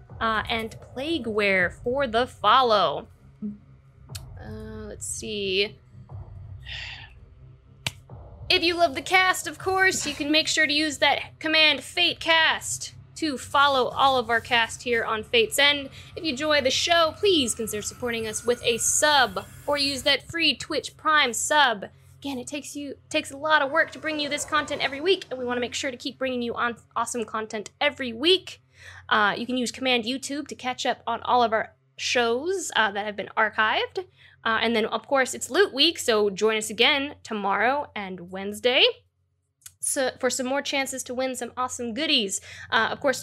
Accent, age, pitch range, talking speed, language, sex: American, 10-29, 225-290 Hz, 185 wpm, English, female